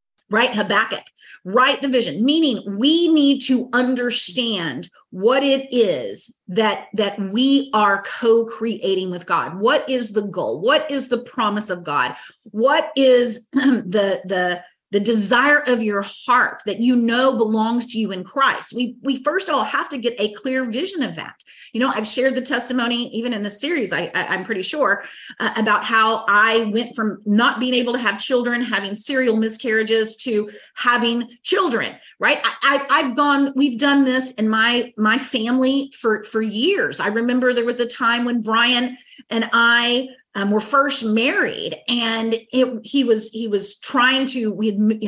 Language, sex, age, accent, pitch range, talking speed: English, female, 30-49, American, 215-265 Hz, 180 wpm